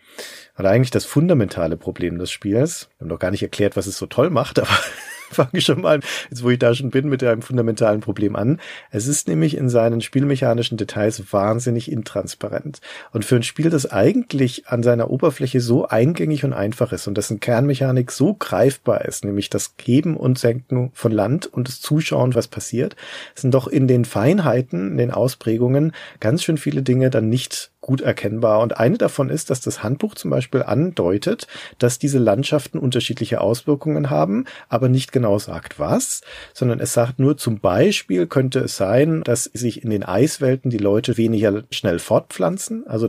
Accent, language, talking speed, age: German, German, 185 wpm, 40-59